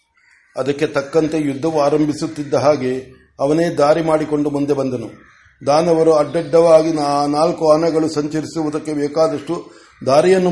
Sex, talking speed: male, 95 wpm